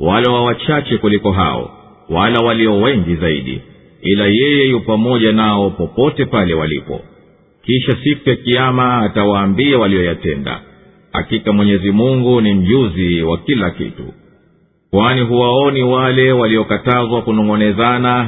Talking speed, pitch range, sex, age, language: 120 wpm, 100-130 Hz, male, 50-69, Swahili